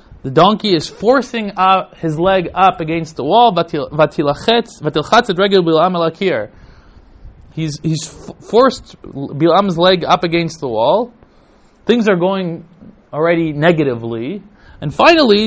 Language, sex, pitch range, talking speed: English, male, 145-190 Hz, 110 wpm